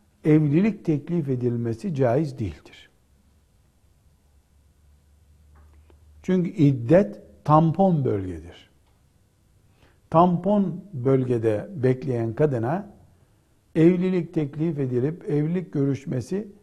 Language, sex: Turkish, male